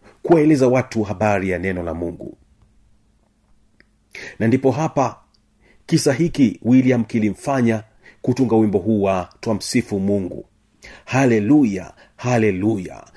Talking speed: 100 wpm